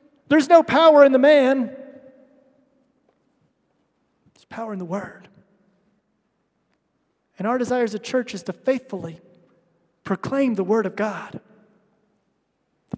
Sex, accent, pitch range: male, American, 215-270 Hz